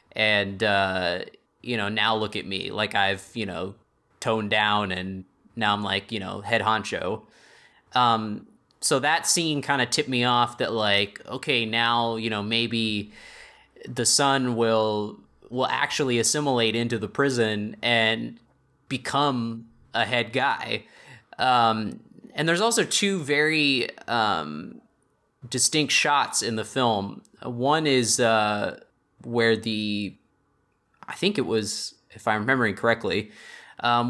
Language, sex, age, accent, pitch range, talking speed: English, male, 20-39, American, 105-120 Hz, 135 wpm